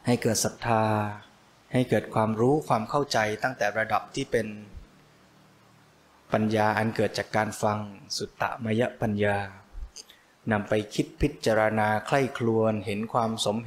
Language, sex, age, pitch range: Thai, male, 20-39, 105-125 Hz